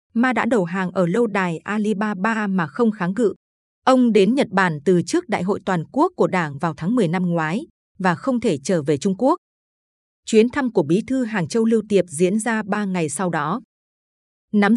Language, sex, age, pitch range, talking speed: Vietnamese, female, 20-39, 180-230 Hz, 210 wpm